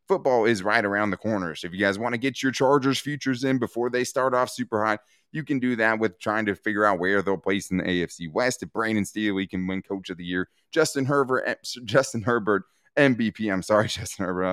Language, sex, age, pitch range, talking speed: English, male, 20-39, 95-120 Hz, 250 wpm